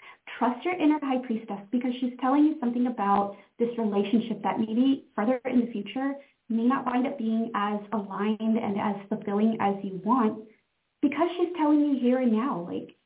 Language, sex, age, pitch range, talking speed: English, female, 30-49, 225-275 Hz, 185 wpm